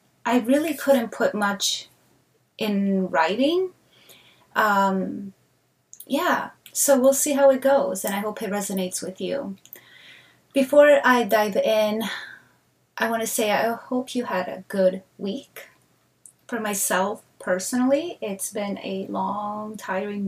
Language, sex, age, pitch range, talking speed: English, female, 20-39, 190-245 Hz, 135 wpm